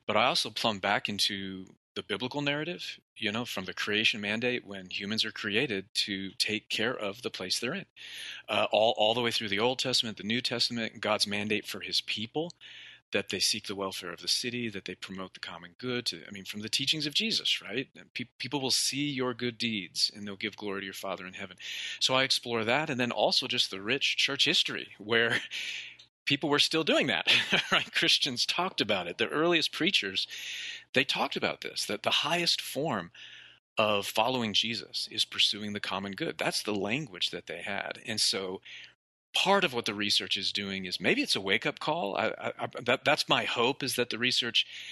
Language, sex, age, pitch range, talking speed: English, male, 40-59, 100-125 Hz, 210 wpm